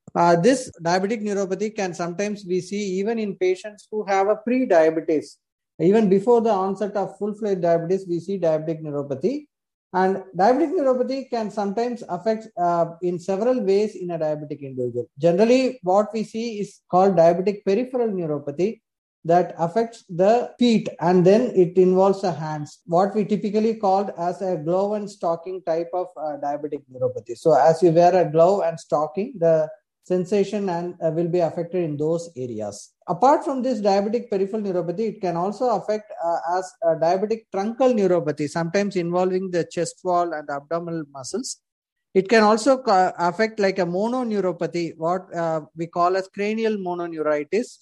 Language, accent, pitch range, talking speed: English, Indian, 170-210 Hz, 165 wpm